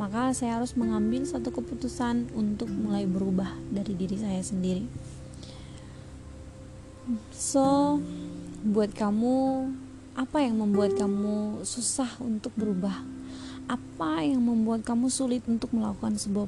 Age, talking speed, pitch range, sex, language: 20-39, 115 wpm, 200-240 Hz, female, Indonesian